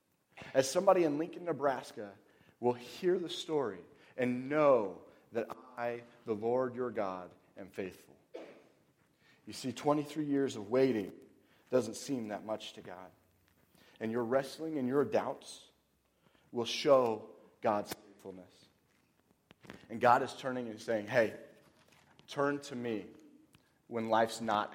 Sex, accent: male, American